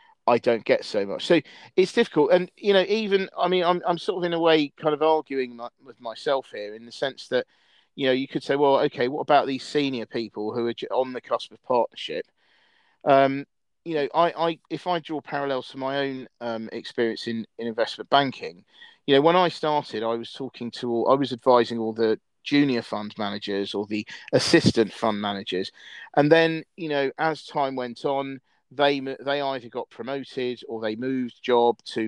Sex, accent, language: male, British, English